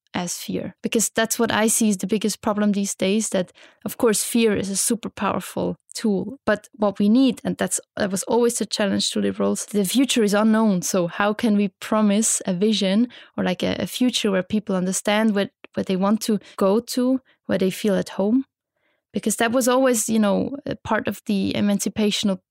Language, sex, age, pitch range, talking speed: English, female, 20-39, 195-230 Hz, 205 wpm